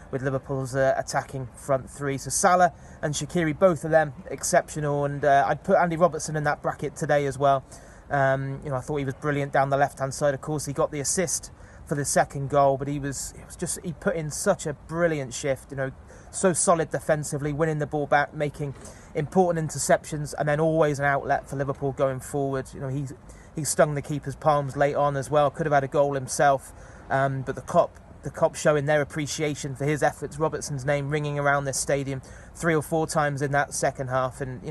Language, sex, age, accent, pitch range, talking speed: English, male, 30-49, British, 135-155 Hz, 220 wpm